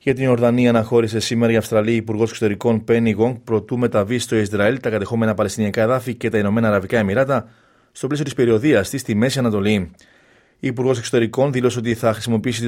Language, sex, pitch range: Greek, male, 105-120 Hz